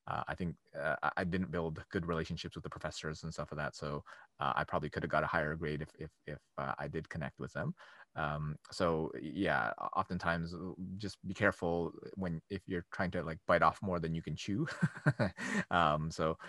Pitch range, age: 80-100 Hz, 20-39